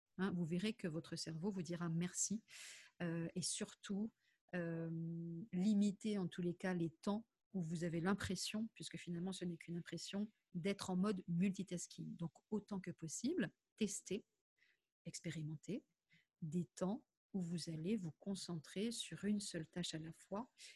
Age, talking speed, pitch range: 40-59, 155 wpm, 170-205 Hz